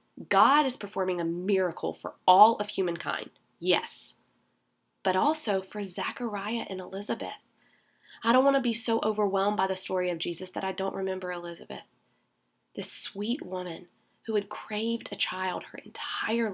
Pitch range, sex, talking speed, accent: 170-210 Hz, female, 155 wpm, American